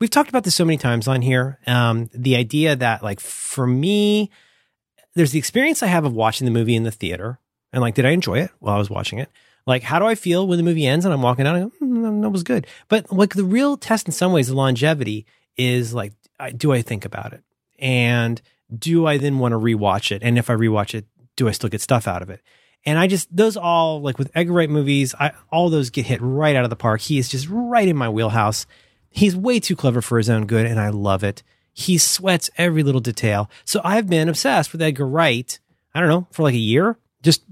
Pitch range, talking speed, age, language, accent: 115-170 Hz, 250 wpm, 30-49, English, American